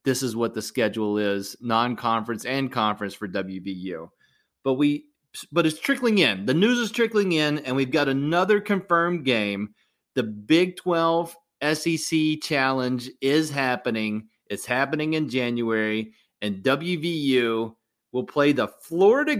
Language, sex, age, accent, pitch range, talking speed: English, male, 30-49, American, 120-155 Hz, 140 wpm